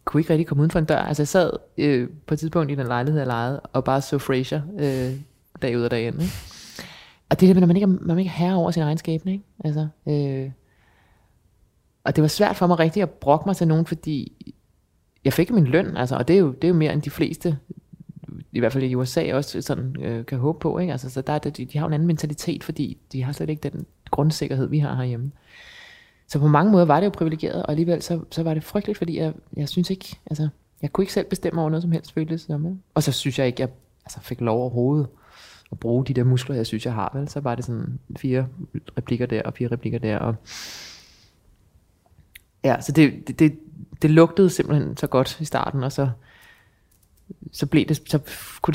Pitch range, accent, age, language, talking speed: 120-160 Hz, native, 20-39, Danish, 230 wpm